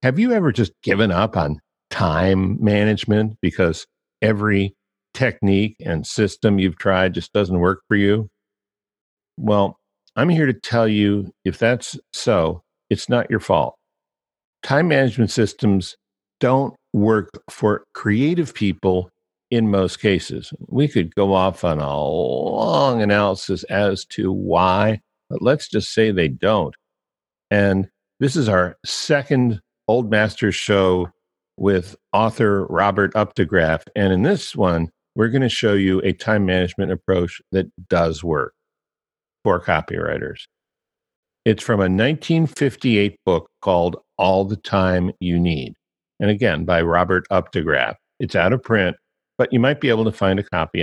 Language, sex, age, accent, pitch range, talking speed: English, male, 50-69, American, 95-110 Hz, 145 wpm